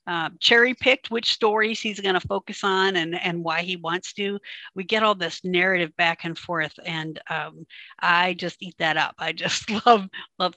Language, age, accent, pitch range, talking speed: English, 50-69, American, 170-205 Hz, 200 wpm